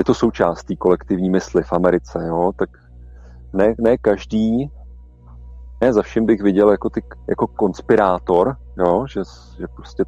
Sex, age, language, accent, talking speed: male, 40-59, Czech, native, 150 wpm